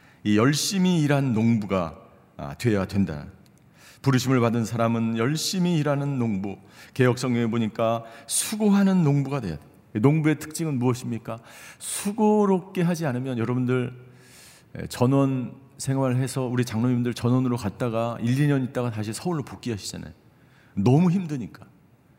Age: 50-69